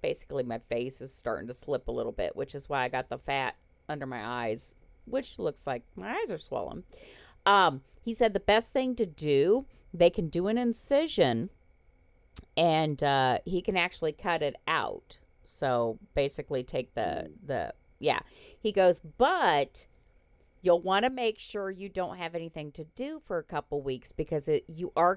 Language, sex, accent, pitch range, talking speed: English, female, American, 140-210 Hz, 180 wpm